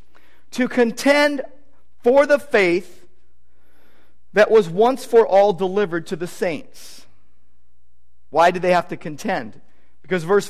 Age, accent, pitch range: 50-69, American, 150-230 Hz